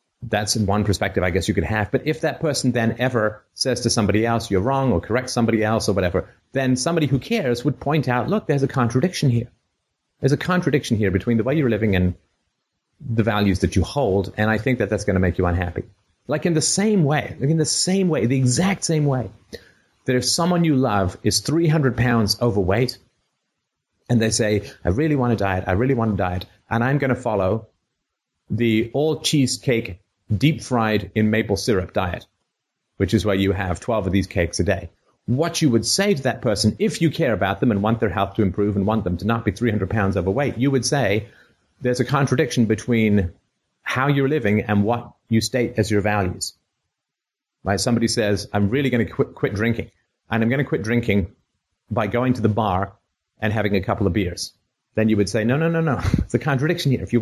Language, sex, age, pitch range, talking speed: English, male, 30-49, 100-130 Hz, 220 wpm